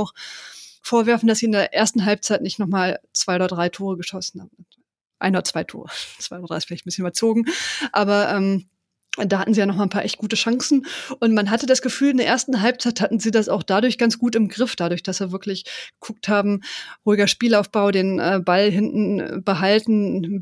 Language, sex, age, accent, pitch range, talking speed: German, female, 30-49, German, 190-220 Hz, 215 wpm